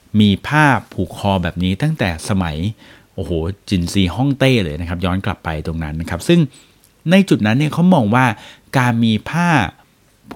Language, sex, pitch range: Thai, male, 95-130 Hz